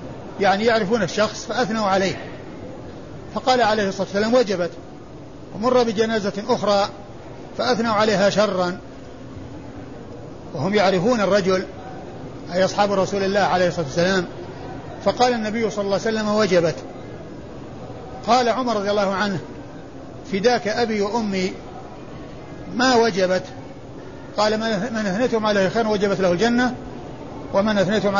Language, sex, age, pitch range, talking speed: Arabic, male, 50-69, 170-215 Hz, 115 wpm